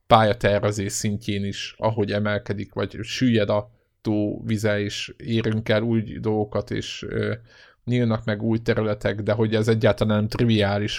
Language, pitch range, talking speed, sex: Hungarian, 105-120 Hz, 140 wpm, male